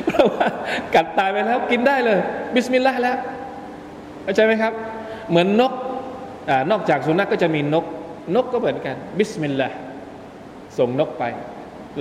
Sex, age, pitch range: male, 20-39, 150-220 Hz